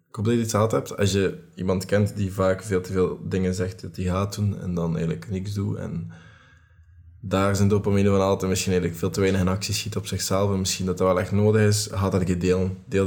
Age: 20-39